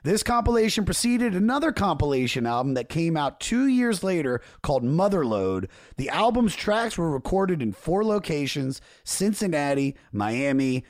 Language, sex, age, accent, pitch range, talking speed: English, male, 30-49, American, 115-195 Hz, 130 wpm